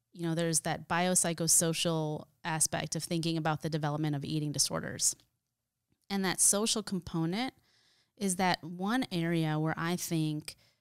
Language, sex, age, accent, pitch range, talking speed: English, female, 30-49, American, 155-195 Hz, 140 wpm